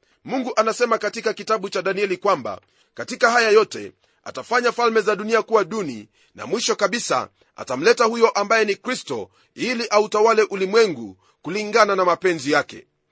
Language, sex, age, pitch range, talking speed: Swahili, male, 40-59, 190-225 Hz, 140 wpm